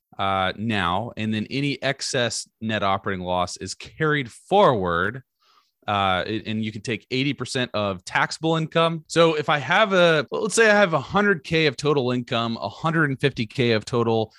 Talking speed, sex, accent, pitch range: 150 wpm, male, American, 105-140 Hz